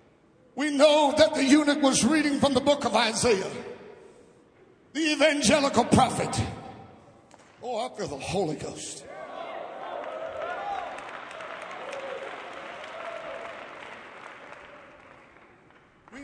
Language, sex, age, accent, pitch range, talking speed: English, male, 60-79, American, 280-330 Hz, 80 wpm